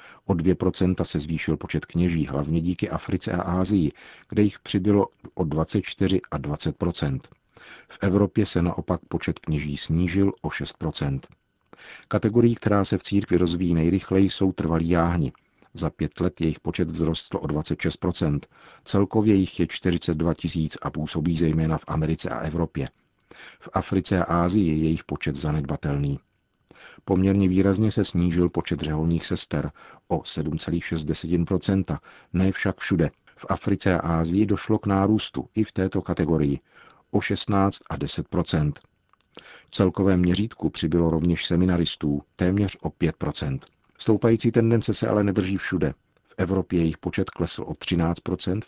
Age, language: 50-69, Czech